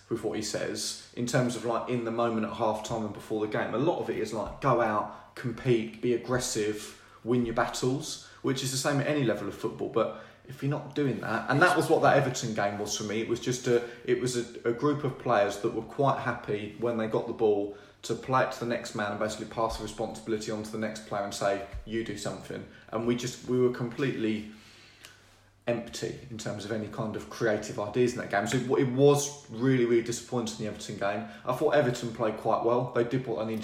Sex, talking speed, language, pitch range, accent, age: male, 245 wpm, English, 110-125 Hz, British, 20-39